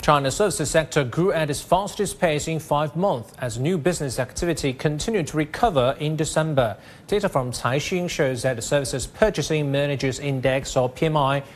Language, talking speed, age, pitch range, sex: English, 165 wpm, 40-59, 130-165 Hz, male